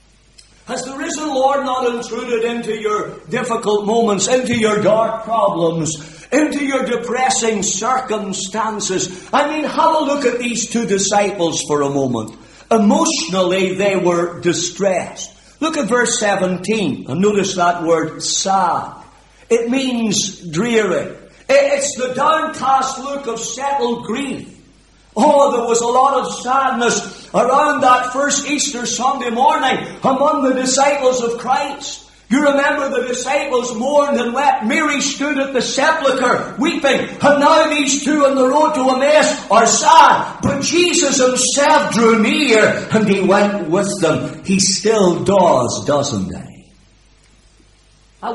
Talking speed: 140 wpm